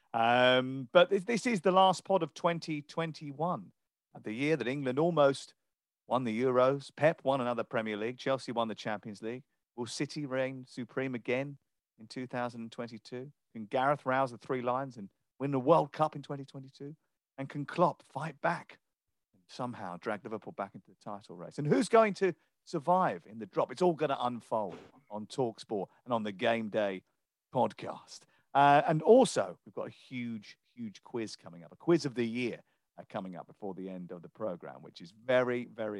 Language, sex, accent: English, male, British